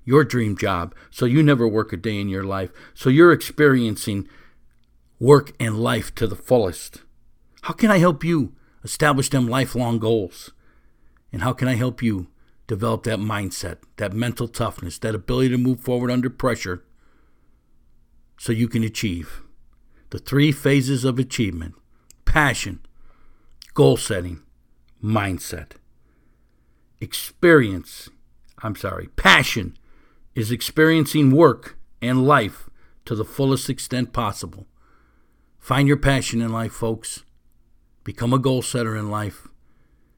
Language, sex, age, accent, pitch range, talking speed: English, male, 60-79, American, 100-130 Hz, 130 wpm